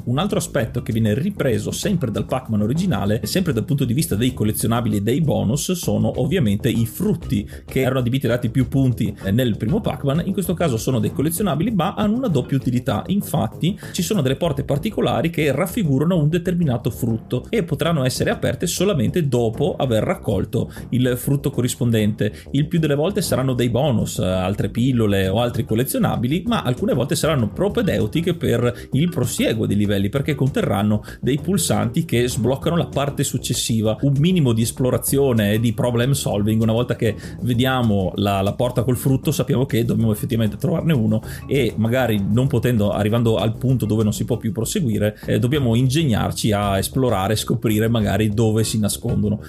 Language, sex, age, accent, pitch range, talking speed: Italian, male, 30-49, native, 110-145 Hz, 175 wpm